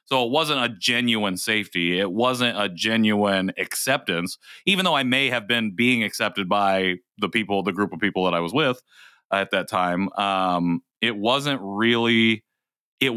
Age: 30-49